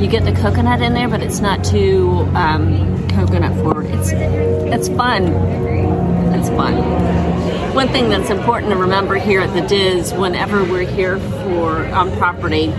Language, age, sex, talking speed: English, 40-59, female, 160 wpm